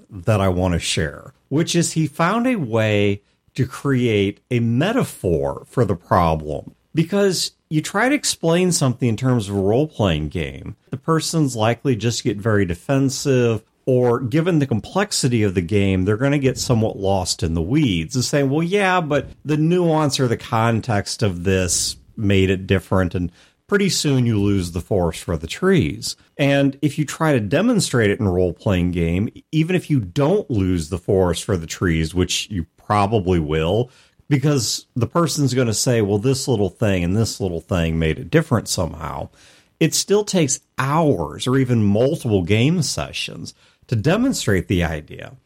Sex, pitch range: male, 95-150 Hz